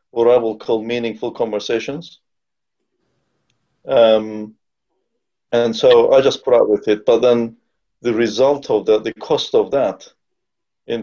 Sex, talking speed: male, 140 wpm